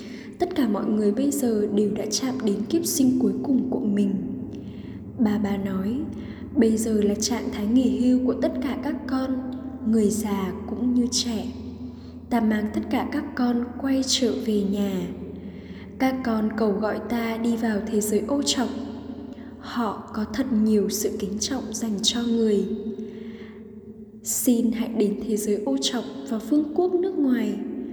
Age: 10-29